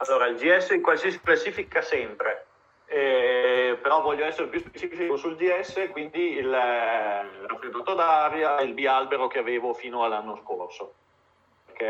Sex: male